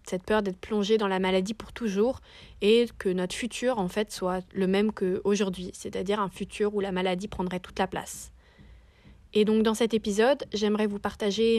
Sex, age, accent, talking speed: female, 20-39, French, 190 wpm